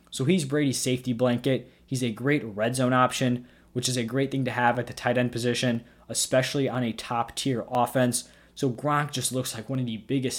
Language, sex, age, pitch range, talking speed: English, male, 20-39, 120-135 Hz, 220 wpm